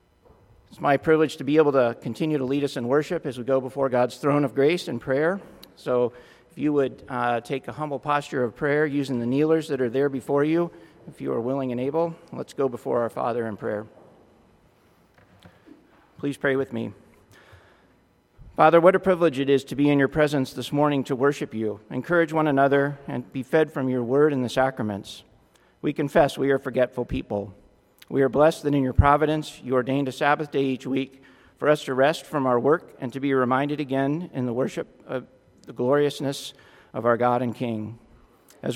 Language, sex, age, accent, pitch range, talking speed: English, male, 40-59, American, 125-145 Hz, 205 wpm